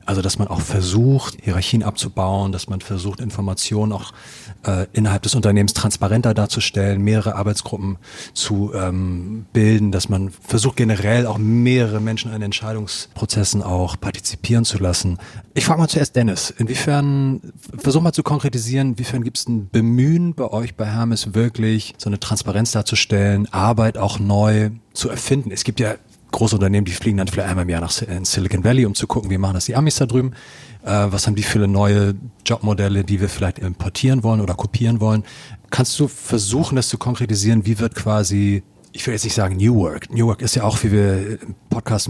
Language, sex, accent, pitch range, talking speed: German, male, German, 100-115 Hz, 185 wpm